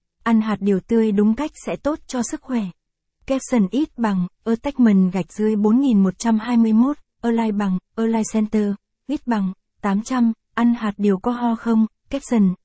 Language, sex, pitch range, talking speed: Vietnamese, female, 200-235 Hz, 150 wpm